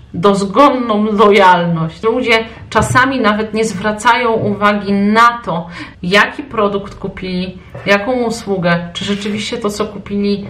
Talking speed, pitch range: 115 wpm, 190-220 Hz